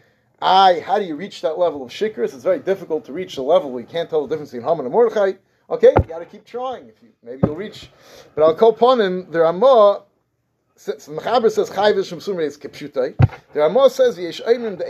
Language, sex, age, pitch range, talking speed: English, male, 30-49, 155-220 Hz, 230 wpm